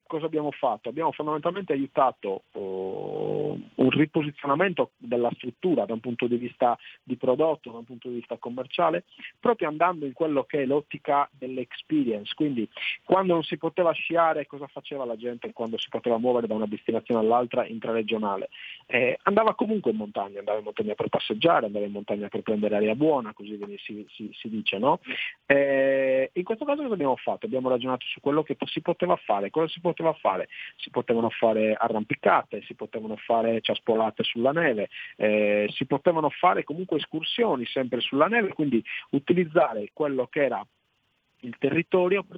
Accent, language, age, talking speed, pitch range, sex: native, Italian, 40-59, 165 wpm, 115-160 Hz, male